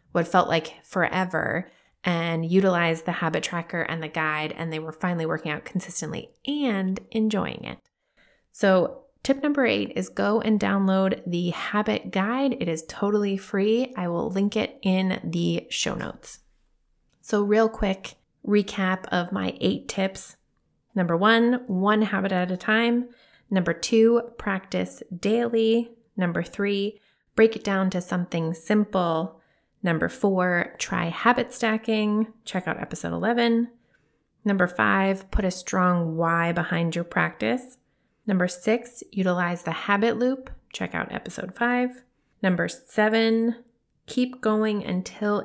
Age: 20-39